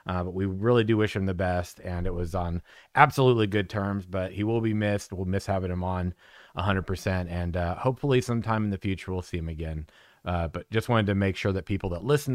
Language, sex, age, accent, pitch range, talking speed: English, male, 30-49, American, 95-110 Hz, 240 wpm